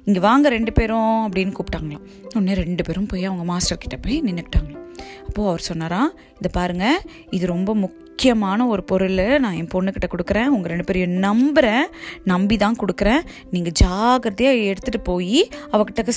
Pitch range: 190-265 Hz